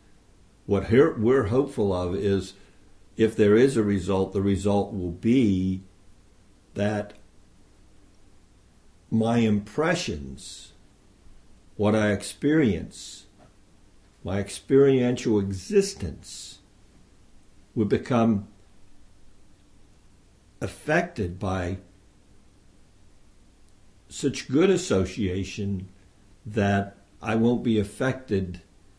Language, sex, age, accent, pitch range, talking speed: English, male, 60-79, American, 95-105 Hz, 70 wpm